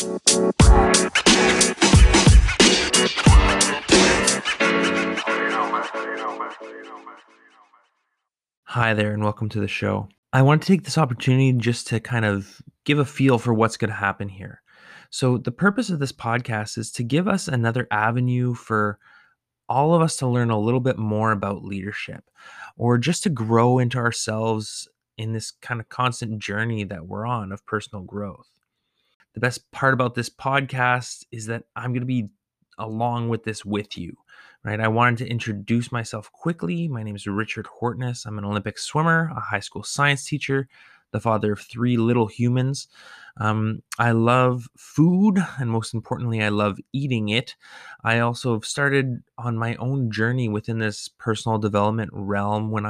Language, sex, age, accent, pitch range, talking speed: English, male, 20-39, American, 105-125 Hz, 155 wpm